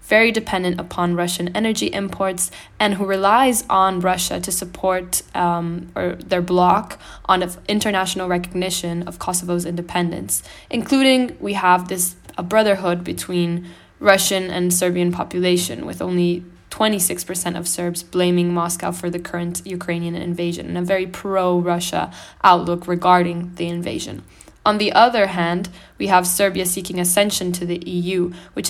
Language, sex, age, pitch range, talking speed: English, female, 10-29, 175-200 Hz, 145 wpm